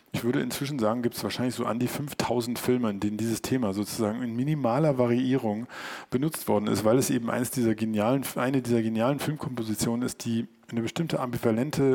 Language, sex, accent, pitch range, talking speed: German, male, German, 110-125 Hz, 190 wpm